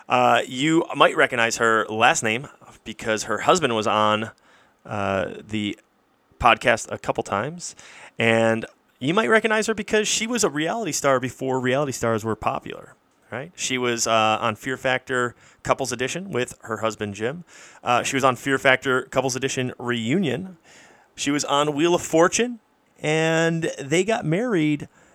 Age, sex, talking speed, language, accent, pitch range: 30-49, male, 155 wpm, English, American, 115-150 Hz